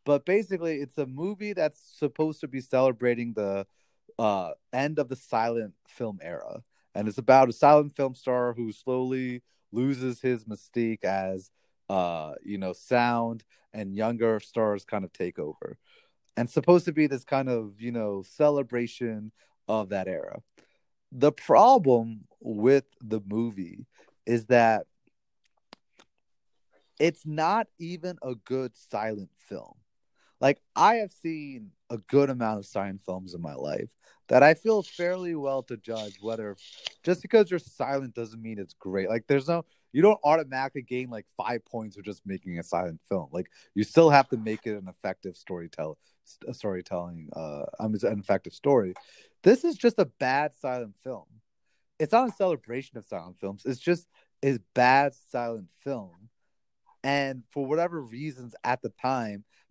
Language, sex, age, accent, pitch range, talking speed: English, male, 30-49, American, 110-150 Hz, 160 wpm